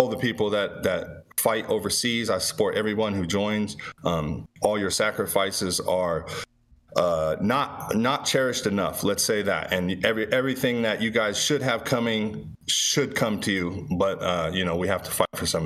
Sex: male